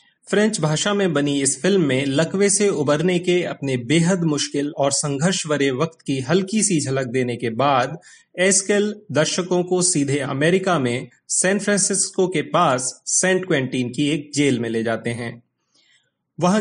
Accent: native